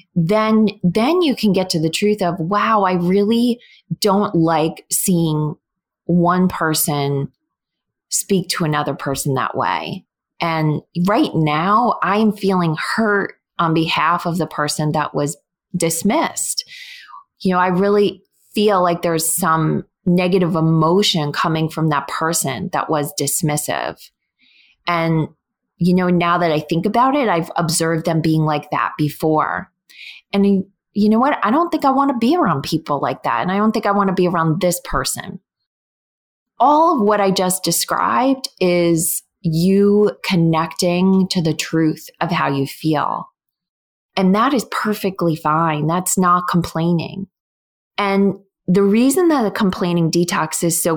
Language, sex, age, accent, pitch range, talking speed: English, female, 20-39, American, 160-200 Hz, 150 wpm